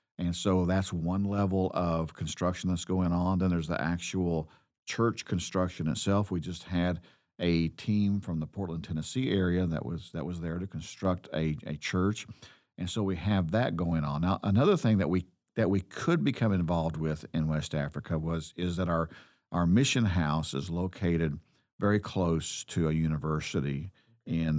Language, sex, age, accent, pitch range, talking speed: English, male, 50-69, American, 80-95 Hz, 180 wpm